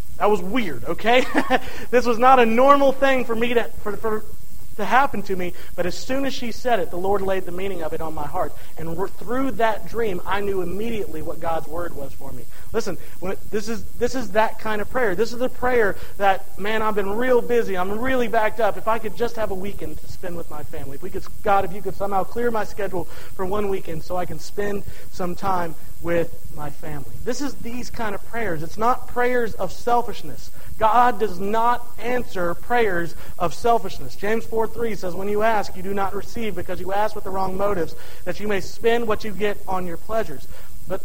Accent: American